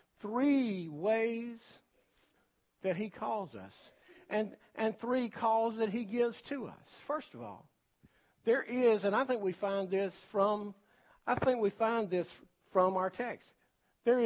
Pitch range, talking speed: 195-250 Hz, 150 wpm